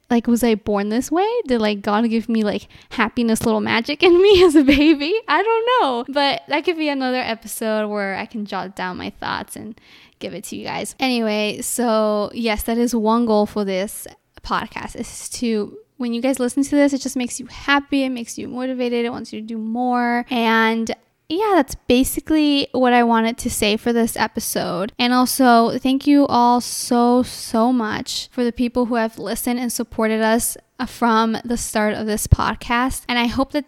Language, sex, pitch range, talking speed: English, female, 220-260 Hz, 205 wpm